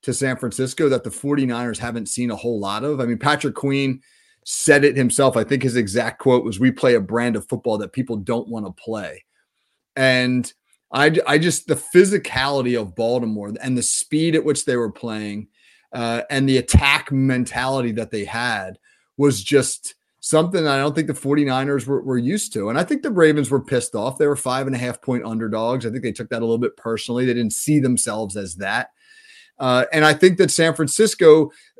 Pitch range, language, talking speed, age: 120-155 Hz, English, 210 wpm, 30-49